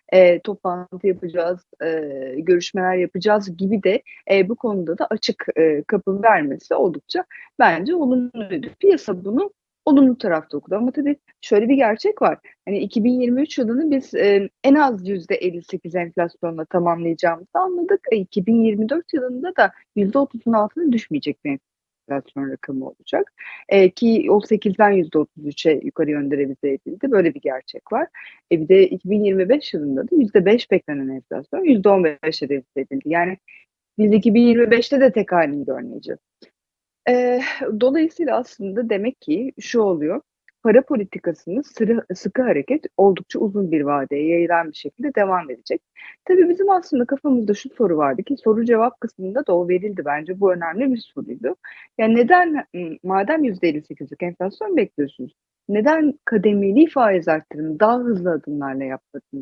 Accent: native